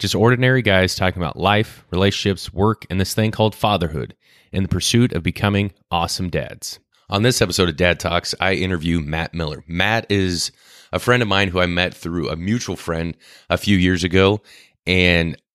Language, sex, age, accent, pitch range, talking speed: English, male, 30-49, American, 80-95 Hz, 185 wpm